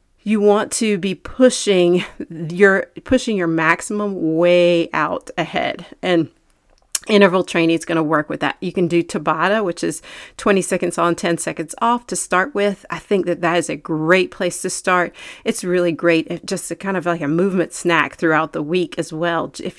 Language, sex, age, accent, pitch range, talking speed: English, female, 40-59, American, 165-190 Hz, 195 wpm